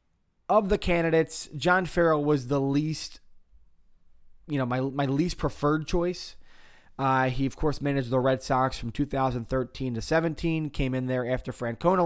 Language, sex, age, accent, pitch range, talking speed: English, male, 20-39, American, 125-155 Hz, 160 wpm